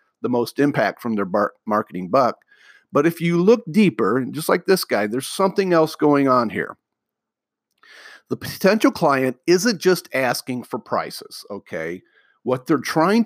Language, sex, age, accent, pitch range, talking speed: English, male, 50-69, American, 130-190 Hz, 155 wpm